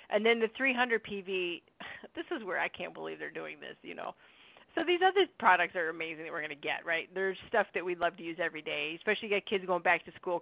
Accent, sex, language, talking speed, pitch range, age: American, female, English, 260 wpm, 175-255 Hz, 40-59